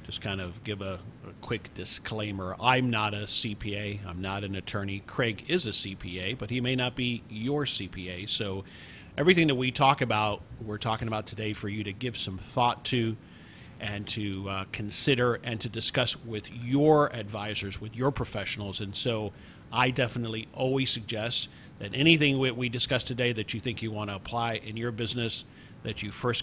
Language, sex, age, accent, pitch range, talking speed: English, male, 50-69, American, 105-125 Hz, 185 wpm